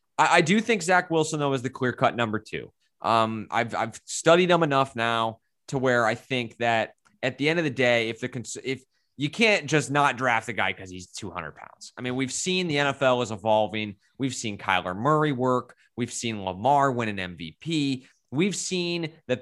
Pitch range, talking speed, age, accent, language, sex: 115-155 Hz, 205 wpm, 20-39, American, English, male